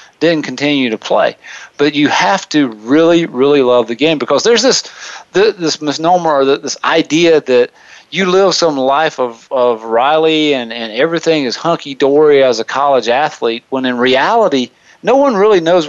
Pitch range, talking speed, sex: 130-165 Hz, 180 wpm, male